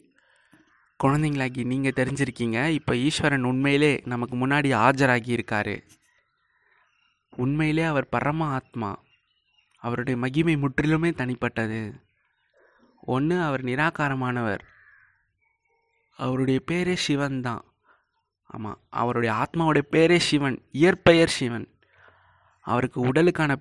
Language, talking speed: Tamil, 80 wpm